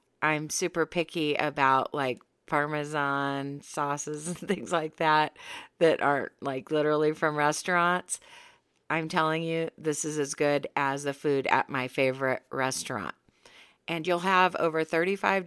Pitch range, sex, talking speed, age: 140-170 Hz, female, 140 wpm, 40-59